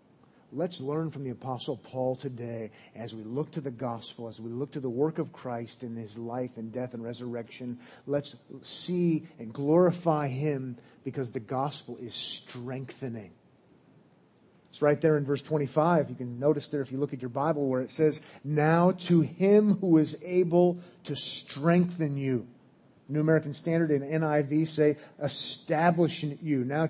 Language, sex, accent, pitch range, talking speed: English, male, American, 130-165 Hz, 165 wpm